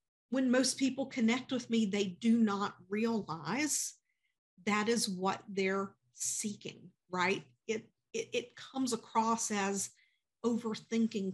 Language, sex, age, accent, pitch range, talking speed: English, female, 50-69, American, 190-230 Hz, 120 wpm